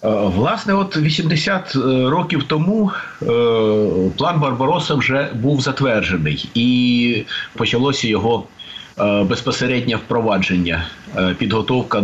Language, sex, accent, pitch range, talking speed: Ukrainian, male, native, 95-120 Hz, 80 wpm